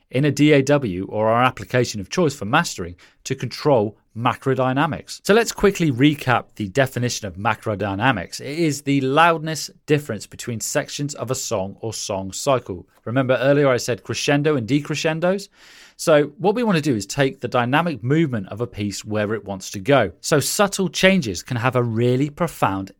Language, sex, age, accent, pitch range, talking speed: English, male, 30-49, British, 105-145 Hz, 175 wpm